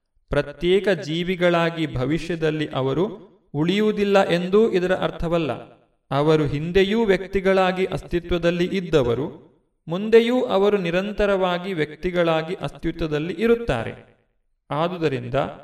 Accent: native